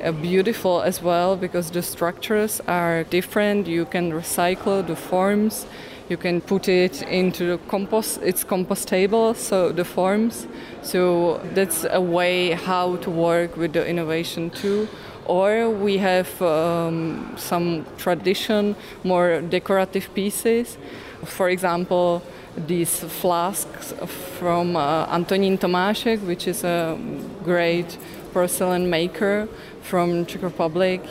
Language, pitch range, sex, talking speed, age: English, 170-190 Hz, female, 120 wpm, 20-39